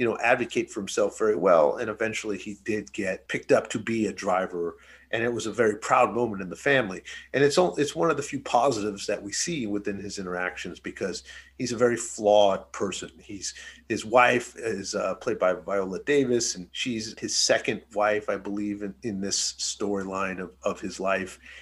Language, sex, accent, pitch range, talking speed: English, male, American, 100-120 Hz, 205 wpm